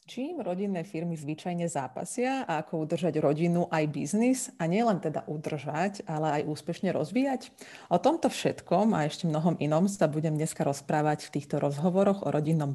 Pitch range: 155-200 Hz